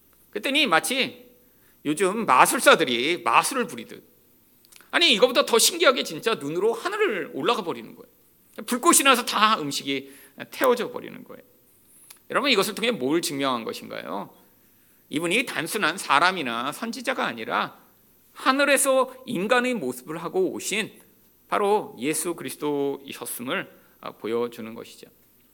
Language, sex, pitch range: Korean, male, 220-285 Hz